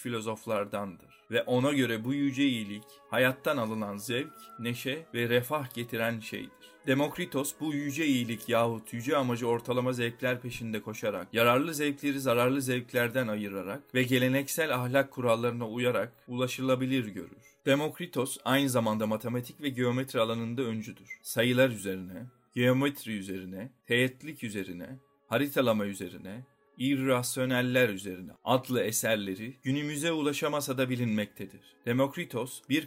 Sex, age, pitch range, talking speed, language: male, 40-59, 110-140 Hz, 115 wpm, Turkish